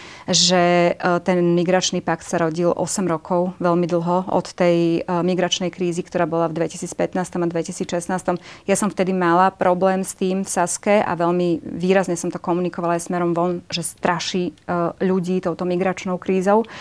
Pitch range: 170-185 Hz